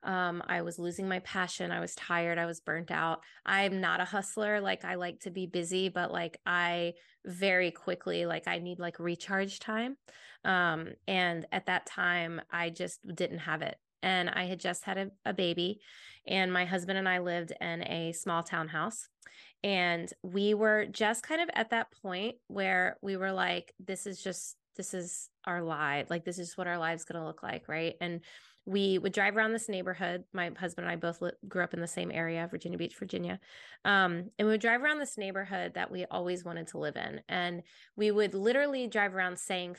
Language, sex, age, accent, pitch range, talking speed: English, female, 20-39, American, 170-195 Hz, 205 wpm